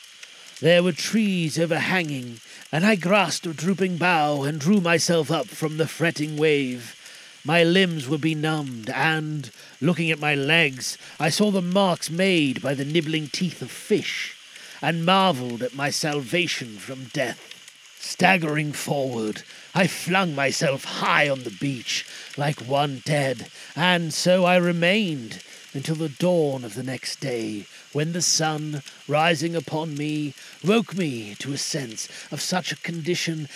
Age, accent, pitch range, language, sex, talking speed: 40-59, British, 140-180 Hz, English, male, 150 wpm